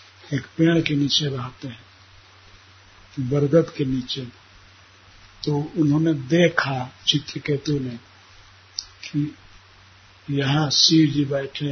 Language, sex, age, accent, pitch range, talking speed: Hindi, male, 60-79, native, 95-155 Hz, 95 wpm